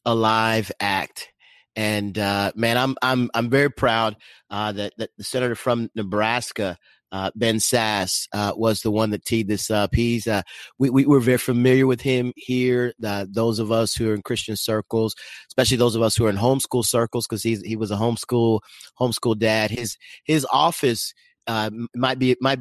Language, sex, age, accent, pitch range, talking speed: English, male, 30-49, American, 105-125 Hz, 185 wpm